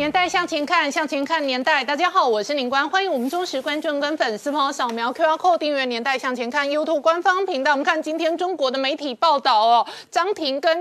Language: Chinese